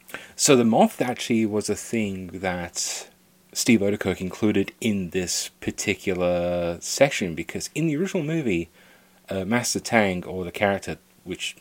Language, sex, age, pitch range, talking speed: English, male, 30-49, 95-125 Hz, 140 wpm